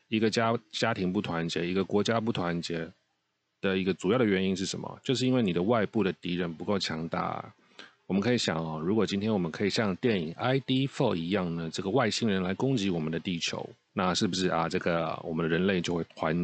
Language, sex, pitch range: Chinese, male, 85-105 Hz